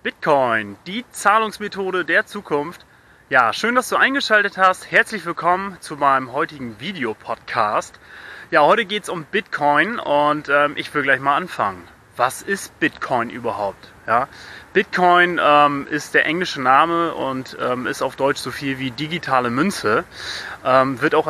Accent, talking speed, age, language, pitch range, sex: German, 150 wpm, 30-49, German, 135-175 Hz, male